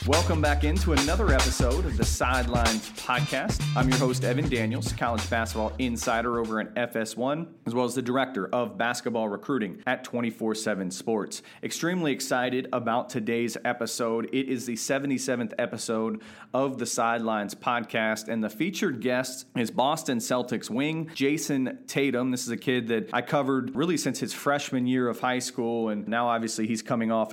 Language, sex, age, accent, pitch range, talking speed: English, male, 40-59, American, 115-130 Hz, 165 wpm